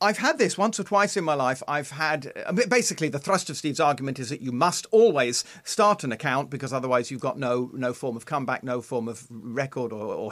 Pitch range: 130-175 Hz